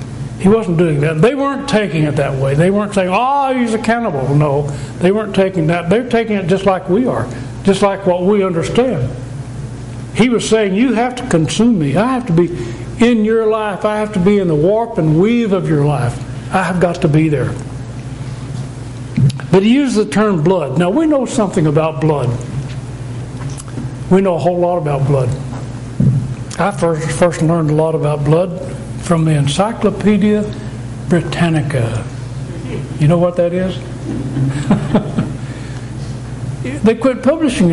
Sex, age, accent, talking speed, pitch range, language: male, 60-79, American, 170 wpm, 130-190 Hz, English